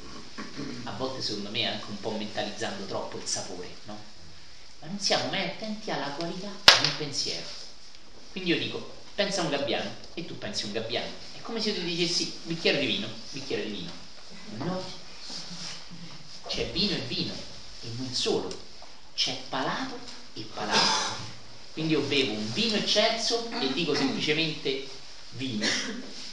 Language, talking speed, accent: Italian, 155 wpm, native